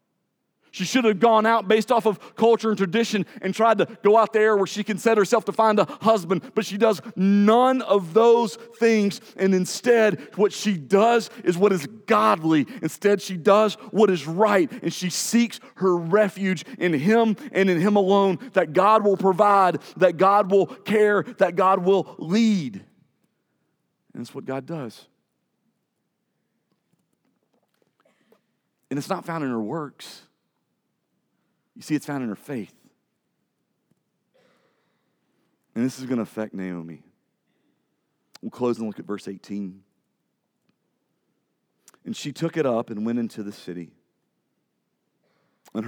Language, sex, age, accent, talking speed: English, male, 40-59, American, 150 wpm